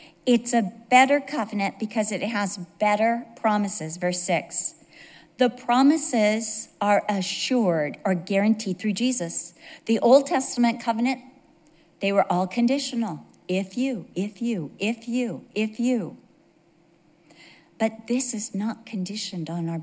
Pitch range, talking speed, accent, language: 180-240 Hz, 125 wpm, American, English